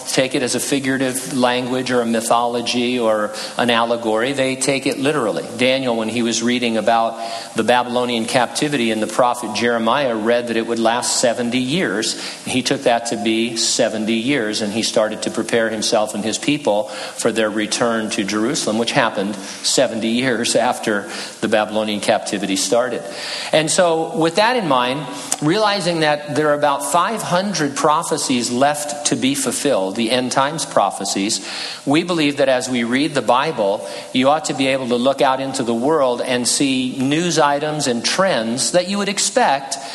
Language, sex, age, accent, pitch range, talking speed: English, male, 50-69, American, 115-150 Hz, 175 wpm